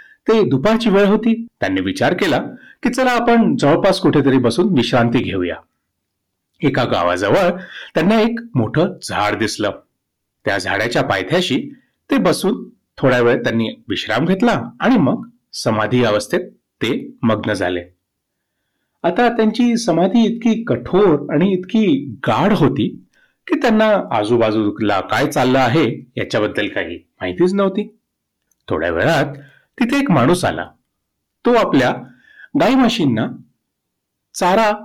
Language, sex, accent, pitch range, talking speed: Marathi, male, native, 135-220 Hz, 120 wpm